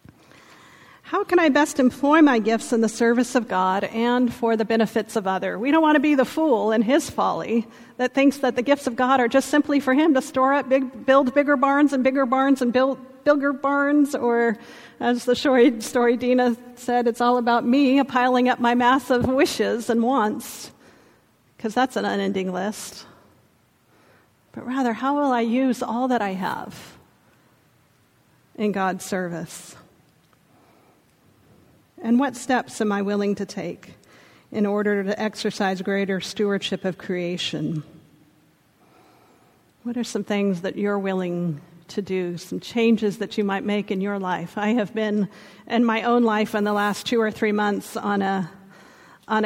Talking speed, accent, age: 170 wpm, American, 50-69